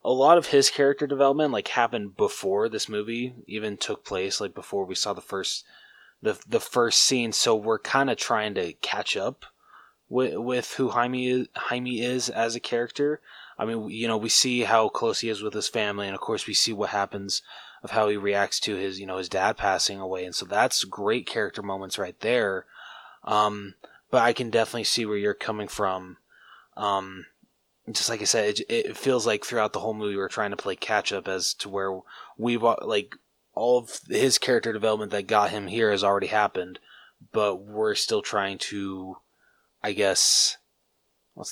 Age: 20-39